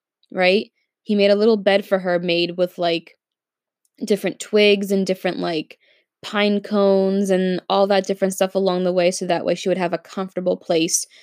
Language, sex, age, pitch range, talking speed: English, female, 10-29, 175-200 Hz, 185 wpm